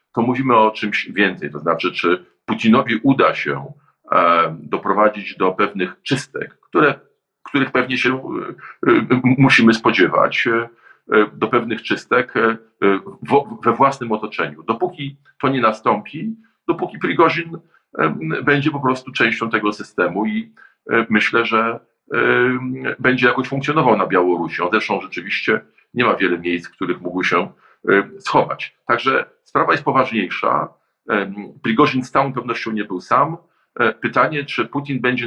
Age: 50-69